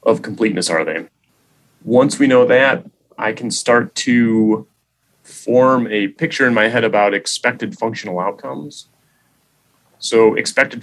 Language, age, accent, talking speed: English, 30-49, American, 135 wpm